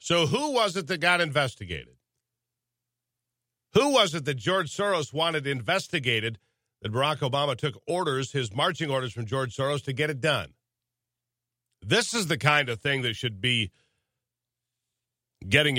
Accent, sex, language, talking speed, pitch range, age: American, male, English, 150 wpm, 120-165 Hz, 50-69